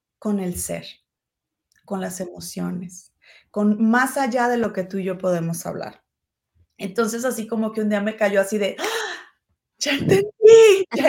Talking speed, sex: 160 wpm, female